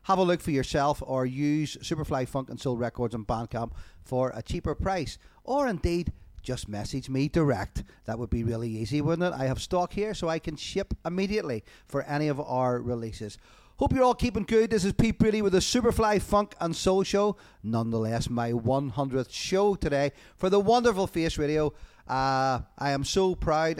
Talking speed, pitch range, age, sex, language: 190 wpm, 125-170 Hz, 30-49, male, English